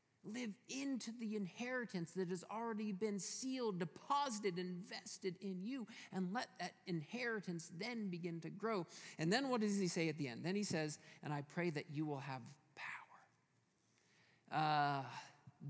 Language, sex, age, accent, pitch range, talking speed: English, male, 40-59, American, 140-185 Hz, 165 wpm